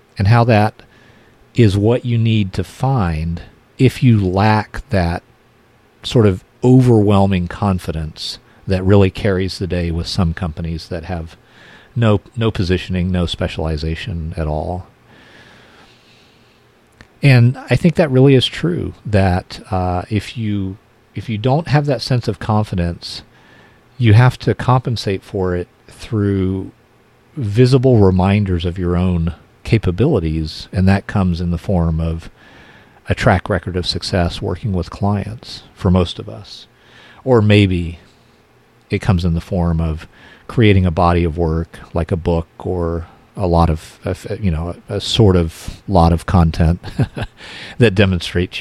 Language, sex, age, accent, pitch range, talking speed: English, male, 40-59, American, 90-115 Hz, 140 wpm